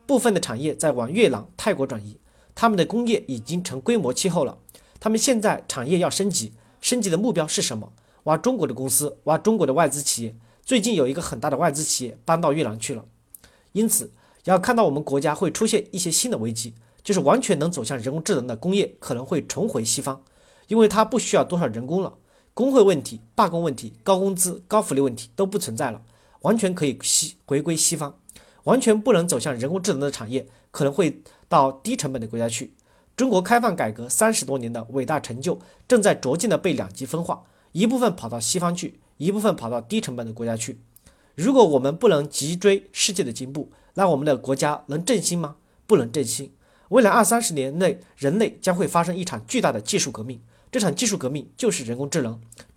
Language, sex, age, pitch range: Chinese, male, 40-59, 130-200 Hz